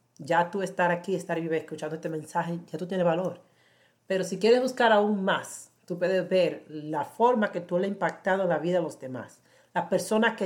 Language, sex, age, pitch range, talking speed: Spanish, female, 40-59, 155-190 Hz, 220 wpm